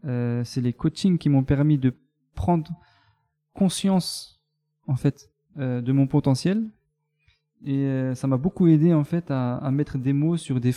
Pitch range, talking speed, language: 120-150 Hz, 175 wpm, French